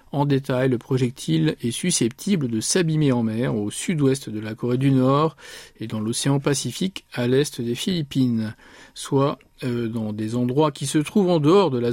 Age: 50-69